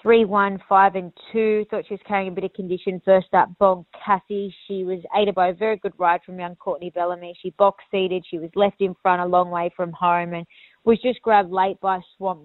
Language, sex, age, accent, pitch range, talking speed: English, female, 20-39, Australian, 180-205 Hz, 230 wpm